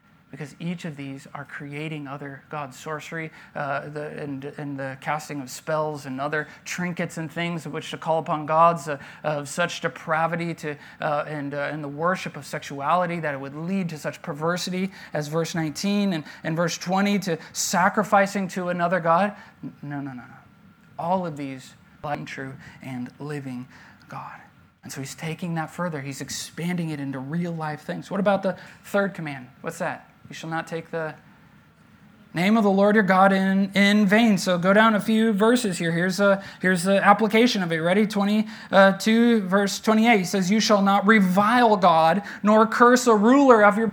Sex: male